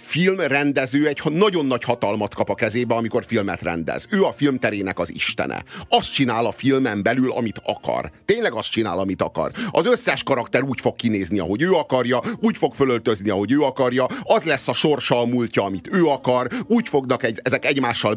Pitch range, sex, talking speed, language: 120-150 Hz, male, 190 wpm, Hungarian